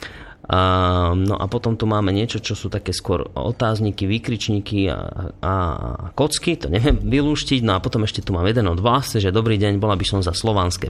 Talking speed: 195 wpm